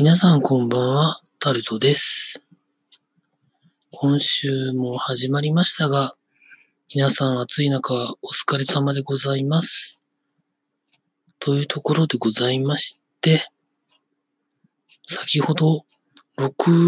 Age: 40-59